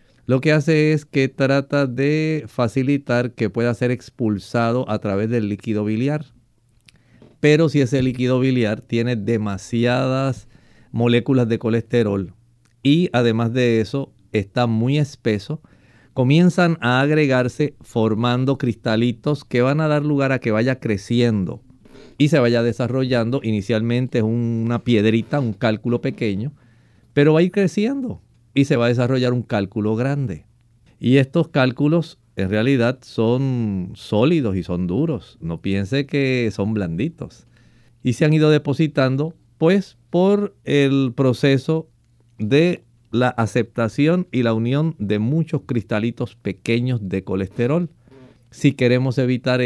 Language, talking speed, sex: Spanish, 135 wpm, male